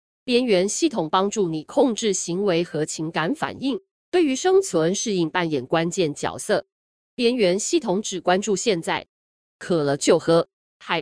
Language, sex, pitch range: Chinese, female, 165-235 Hz